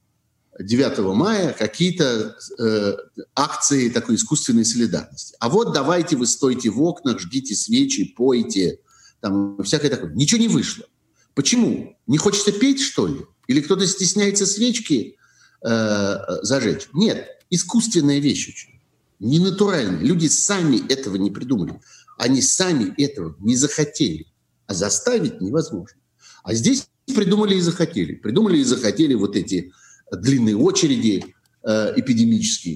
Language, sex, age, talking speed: Russian, male, 50-69, 125 wpm